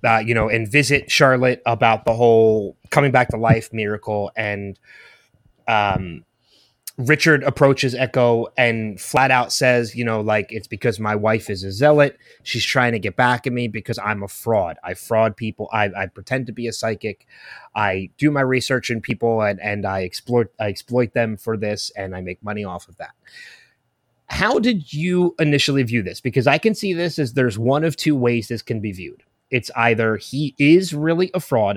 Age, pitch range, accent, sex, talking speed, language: 30-49, 110-140 Hz, American, male, 195 wpm, English